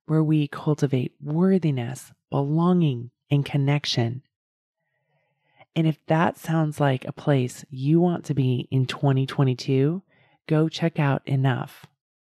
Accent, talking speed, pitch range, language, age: American, 115 wpm, 135-160 Hz, English, 30-49